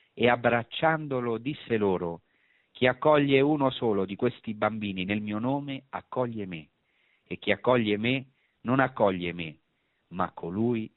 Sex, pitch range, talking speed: male, 95-125 Hz, 135 wpm